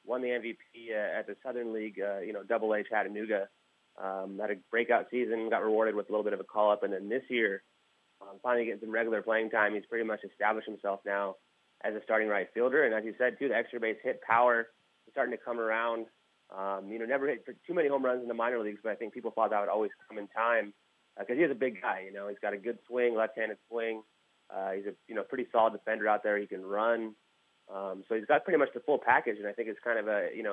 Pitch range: 100-115 Hz